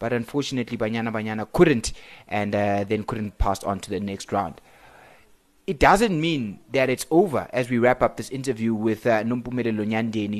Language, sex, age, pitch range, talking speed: English, male, 20-39, 120-150 Hz, 180 wpm